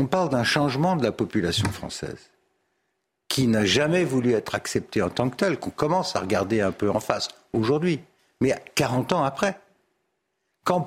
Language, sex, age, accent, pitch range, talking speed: French, male, 60-79, French, 125-180 Hz, 175 wpm